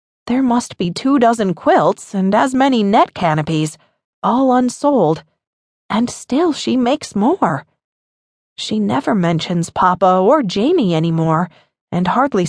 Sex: female